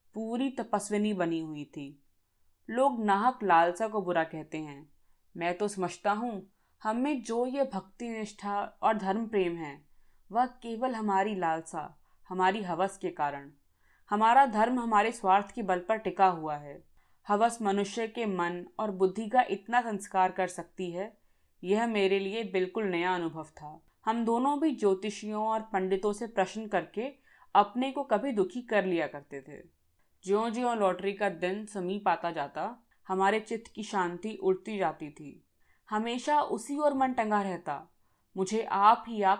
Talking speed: 135 wpm